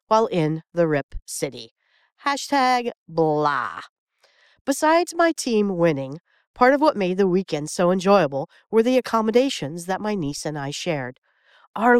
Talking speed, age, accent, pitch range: 145 wpm, 50-69, American, 155-225 Hz